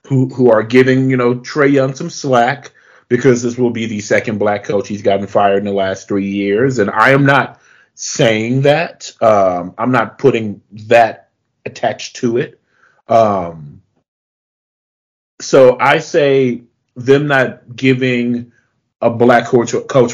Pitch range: 105-130 Hz